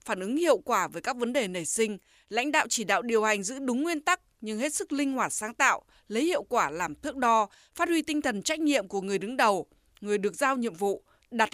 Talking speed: 255 wpm